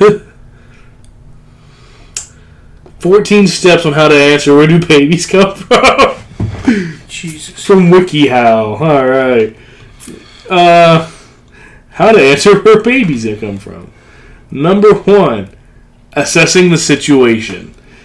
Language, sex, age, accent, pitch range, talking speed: English, male, 20-39, American, 120-175 Hz, 95 wpm